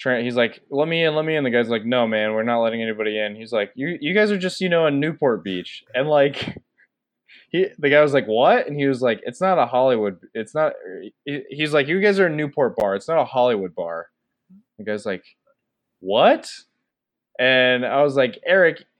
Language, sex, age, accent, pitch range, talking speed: English, male, 20-39, American, 115-155 Hz, 225 wpm